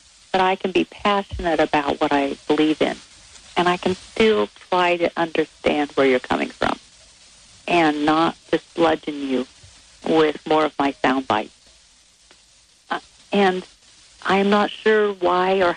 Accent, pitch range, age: American, 160-225 Hz, 50-69